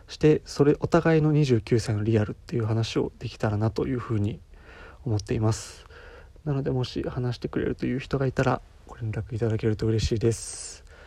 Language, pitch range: Japanese, 105-130 Hz